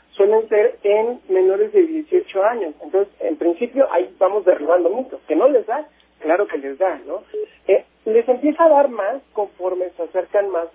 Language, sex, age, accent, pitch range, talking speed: Spanish, male, 40-59, Mexican, 160-220 Hz, 185 wpm